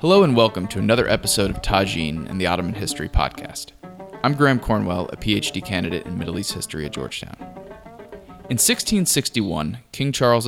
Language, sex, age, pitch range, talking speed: English, male, 20-39, 95-120 Hz, 165 wpm